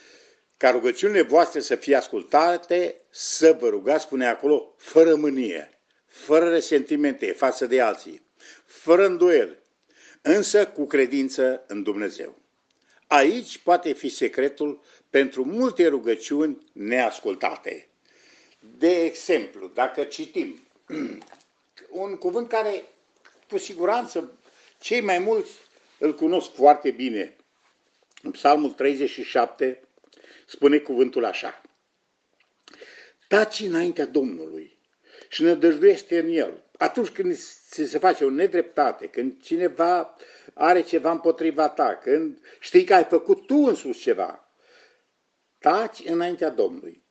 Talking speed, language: 110 wpm, Romanian